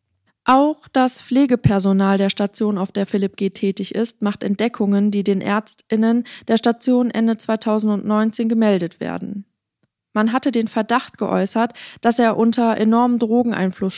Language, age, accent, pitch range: English, 20-39, German, 195-225 Hz